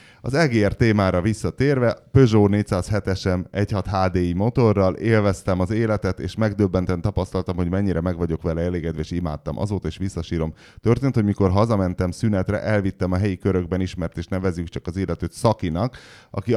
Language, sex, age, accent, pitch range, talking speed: English, male, 30-49, Finnish, 85-110 Hz, 150 wpm